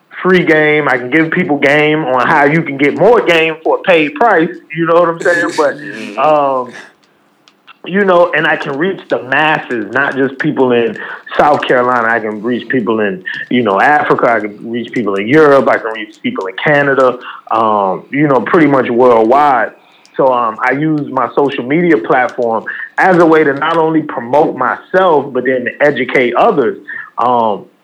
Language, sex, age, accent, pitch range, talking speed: English, male, 20-39, American, 135-180 Hz, 190 wpm